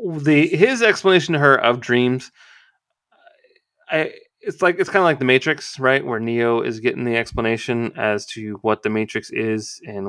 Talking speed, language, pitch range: 180 wpm, English, 115-175 Hz